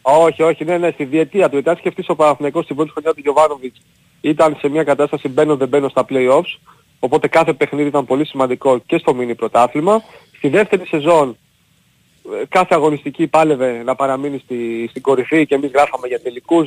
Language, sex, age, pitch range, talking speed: Greek, male, 40-59, 130-160 Hz, 180 wpm